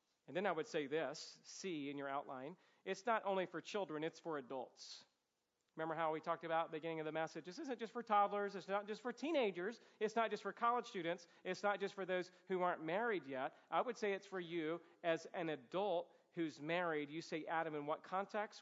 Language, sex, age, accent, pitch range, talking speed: English, male, 40-59, American, 160-195 Hz, 230 wpm